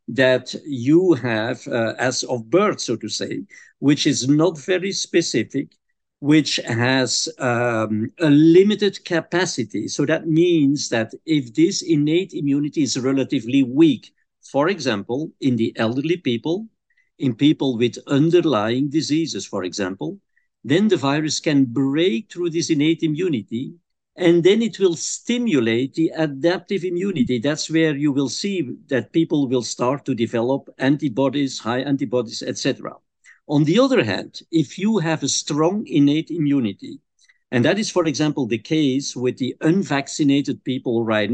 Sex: male